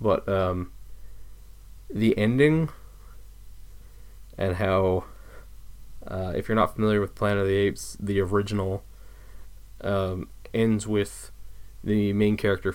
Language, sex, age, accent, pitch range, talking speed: English, male, 20-39, American, 95-105 Hz, 115 wpm